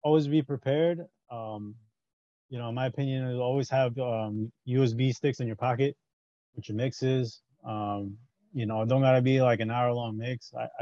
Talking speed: 170 wpm